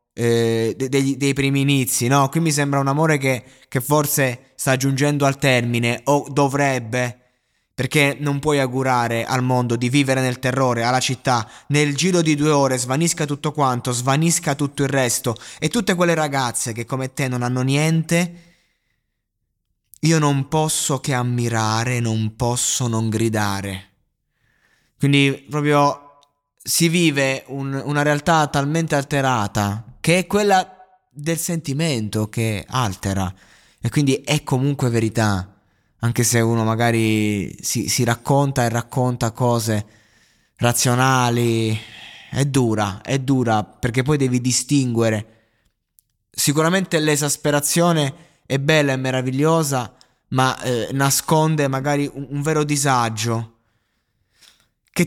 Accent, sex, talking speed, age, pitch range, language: native, male, 130 wpm, 20-39, 115-145 Hz, Italian